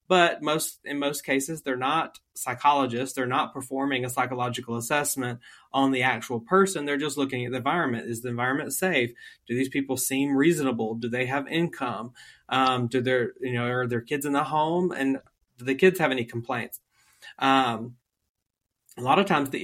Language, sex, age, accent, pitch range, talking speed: English, male, 30-49, American, 125-145 Hz, 185 wpm